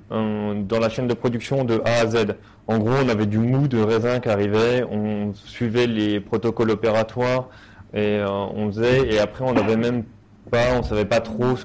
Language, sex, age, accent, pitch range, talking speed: French, male, 30-49, French, 105-125 Hz, 210 wpm